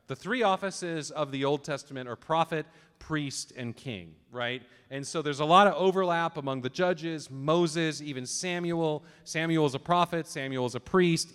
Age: 40-59